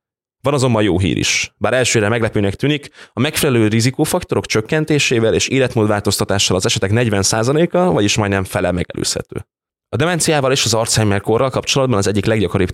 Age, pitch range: 20-39, 95-120 Hz